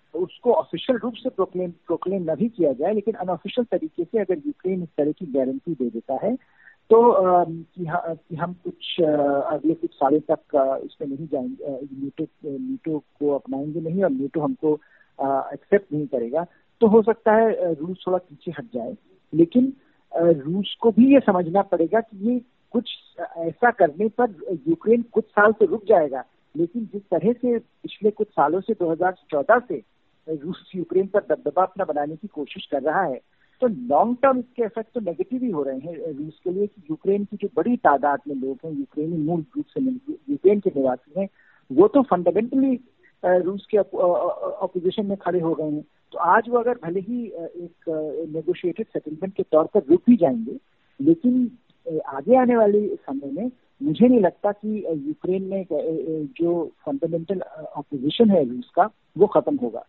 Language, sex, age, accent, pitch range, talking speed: Hindi, male, 50-69, native, 160-230 Hz, 175 wpm